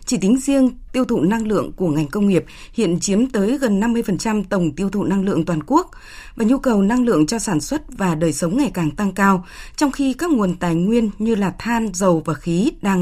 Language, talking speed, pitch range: Vietnamese, 235 wpm, 180-240 Hz